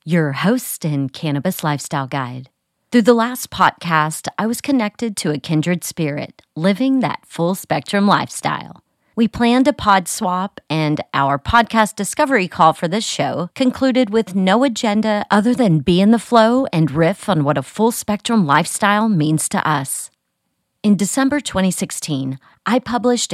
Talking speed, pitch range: 150 wpm, 160-225 Hz